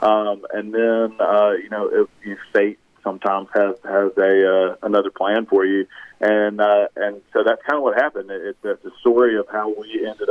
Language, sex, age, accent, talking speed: English, male, 40-59, American, 205 wpm